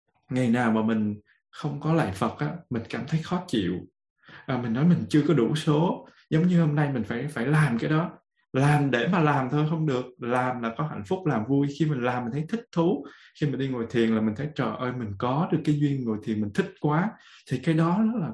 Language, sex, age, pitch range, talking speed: Vietnamese, male, 20-39, 115-155 Hz, 250 wpm